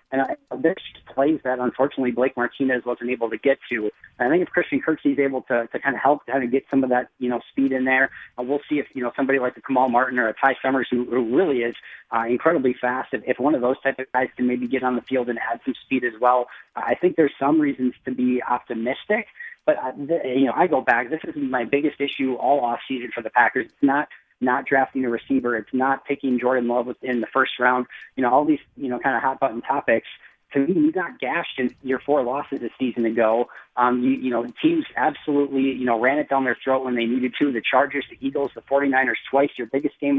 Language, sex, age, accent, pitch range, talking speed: English, male, 30-49, American, 120-140 Hz, 250 wpm